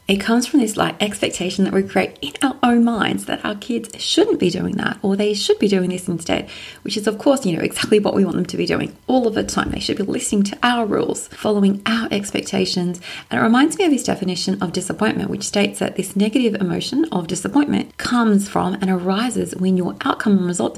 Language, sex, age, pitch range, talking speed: English, female, 30-49, 180-220 Hz, 235 wpm